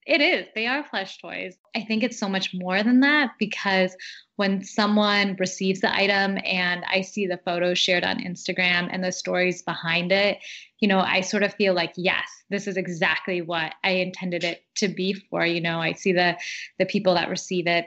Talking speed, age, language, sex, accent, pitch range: 205 wpm, 20-39, English, female, American, 175-205 Hz